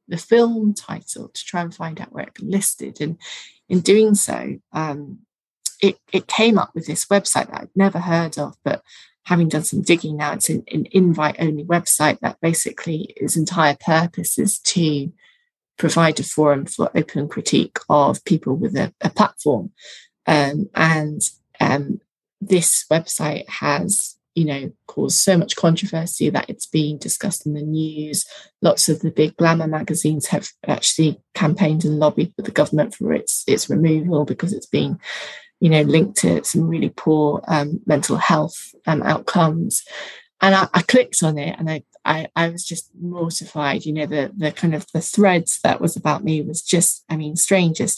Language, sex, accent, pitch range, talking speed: English, female, British, 155-190 Hz, 175 wpm